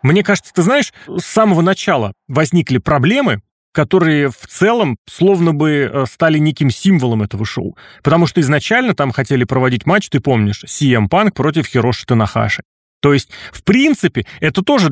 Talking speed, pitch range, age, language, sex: 155 wpm, 130-170 Hz, 30-49, Russian, male